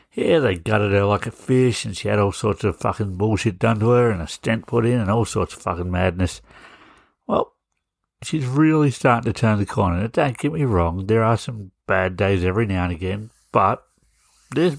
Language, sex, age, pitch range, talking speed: English, male, 60-79, 95-120 Hz, 210 wpm